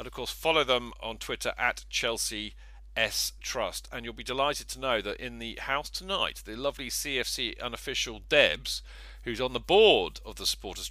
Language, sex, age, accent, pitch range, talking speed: English, male, 40-59, British, 110-135 Hz, 185 wpm